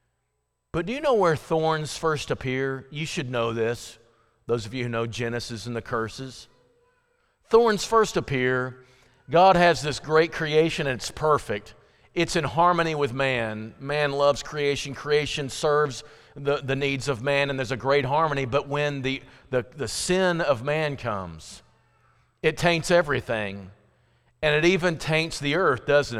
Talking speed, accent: 165 wpm, American